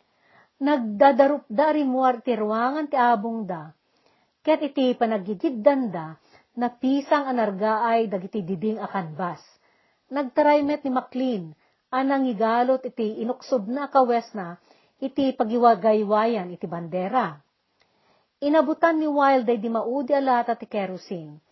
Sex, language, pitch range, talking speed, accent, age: female, Filipino, 205-275 Hz, 100 wpm, native, 40-59